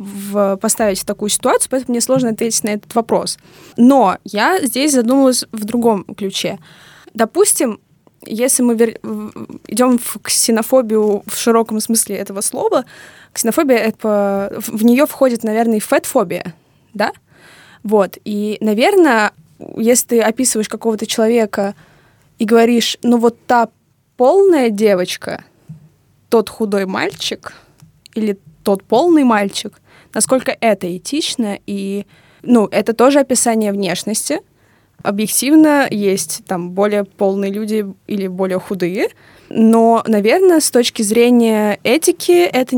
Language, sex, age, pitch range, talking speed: Russian, female, 20-39, 205-245 Hz, 120 wpm